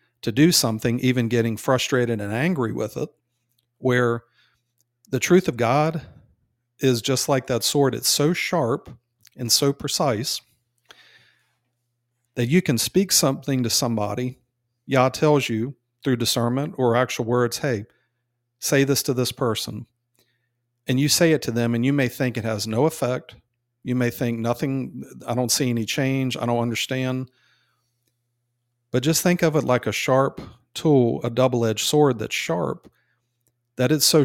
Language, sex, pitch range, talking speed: English, male, 120-135 Hz, 160 wpm